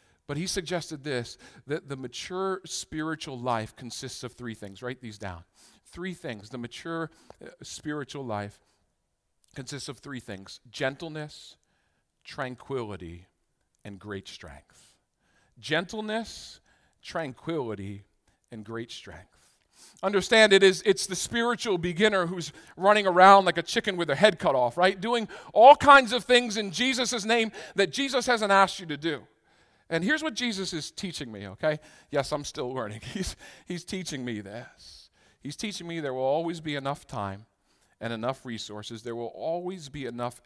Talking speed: 155 wpm